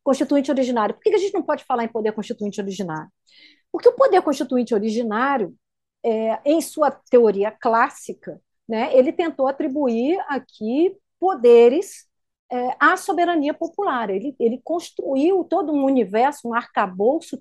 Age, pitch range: 40-59, 235-335 Hz